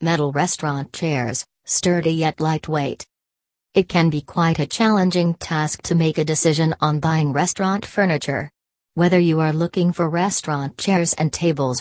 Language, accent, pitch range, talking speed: English, American, 145-170 Hz, 150 wpm